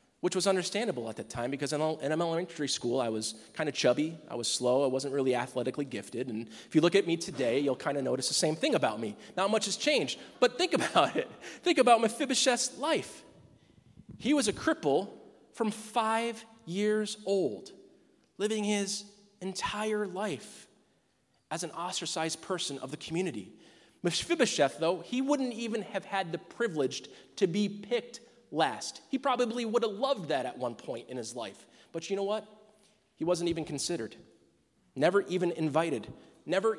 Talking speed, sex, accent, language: 175 wpm, male, American, English